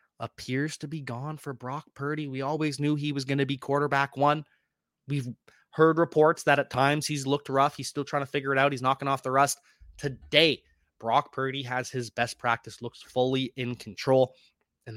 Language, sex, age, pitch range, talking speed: English, male, 20-39, 125-165 Hz, 200 wpm